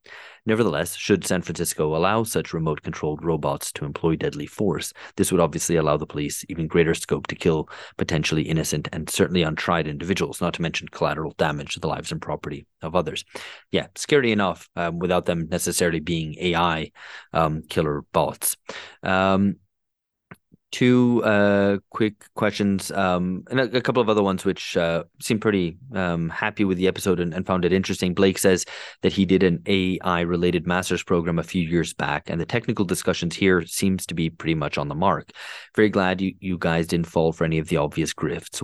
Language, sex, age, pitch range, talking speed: English, male, 30-49, 80-95 Hz, 185 wpm